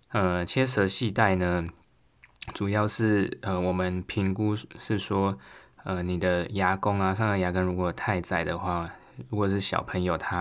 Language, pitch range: Chinese, 85-100 Hz